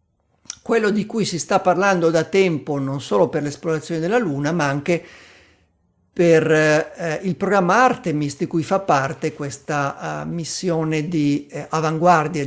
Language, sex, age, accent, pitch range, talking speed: Italian, male, 50-69, native, 150-180 Hz, 145 wpm